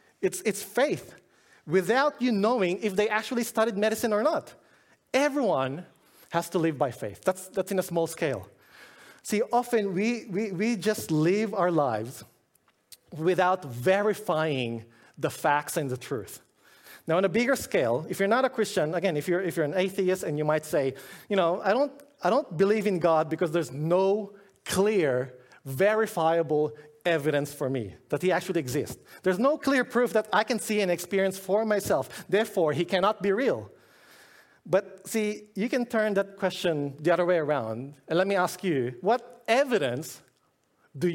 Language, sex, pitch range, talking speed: English, male, 155-215 Hz, 175 wpm